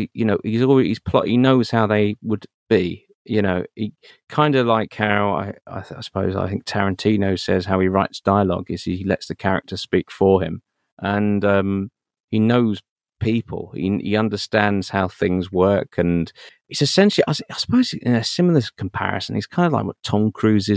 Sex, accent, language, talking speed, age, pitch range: male, British, English, 195 wpm, 30-49, 95-115 Hz